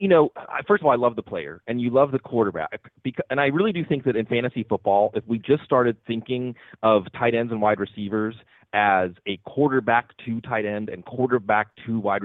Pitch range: 100-125 Hz